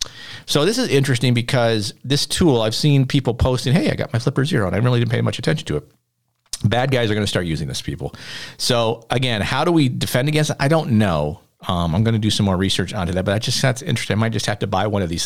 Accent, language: American, English